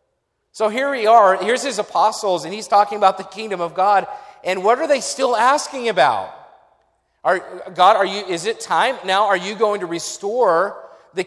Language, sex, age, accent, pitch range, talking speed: English, male, 40-59, American, 185-230 Hz, 190 wpm